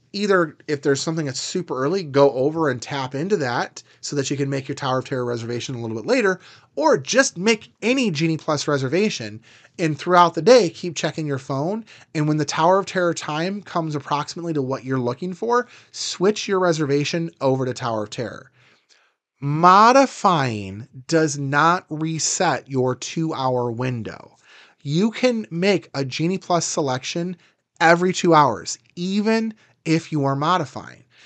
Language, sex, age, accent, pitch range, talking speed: English, male, 30-49, American, 130-175 Hz, 165 wpm